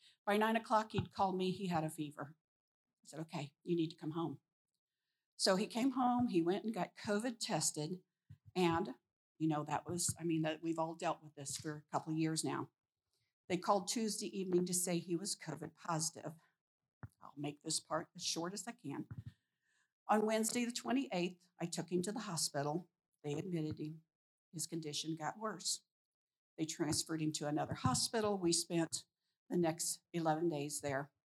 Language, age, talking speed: English, 50-69, 185 wpm